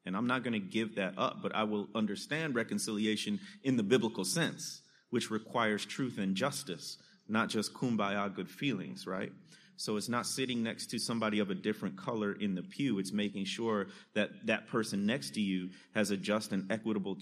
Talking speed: 195 wpm